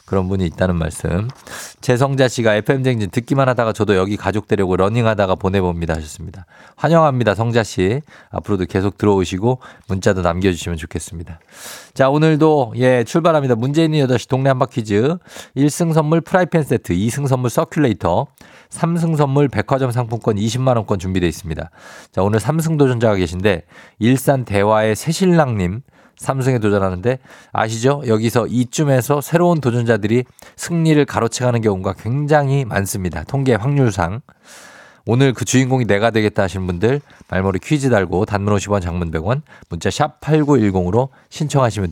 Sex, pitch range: male, 100-140 Hz